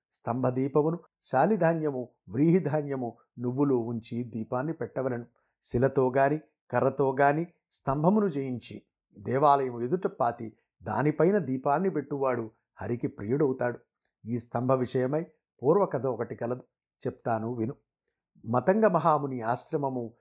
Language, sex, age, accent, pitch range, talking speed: Telugu, male, 60-79, native, 125-150 Hz, 90 wpm